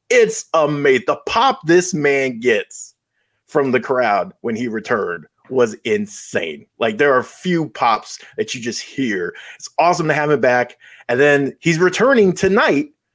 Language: English